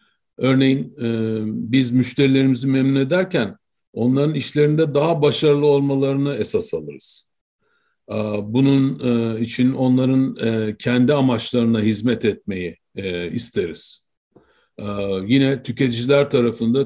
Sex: male